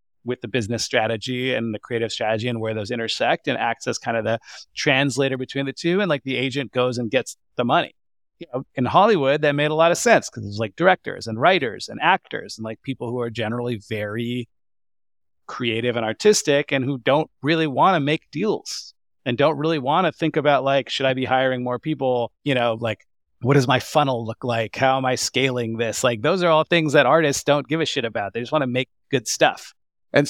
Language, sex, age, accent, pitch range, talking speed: English, male, 30-49, American, 115-145 Hz, 225 wpm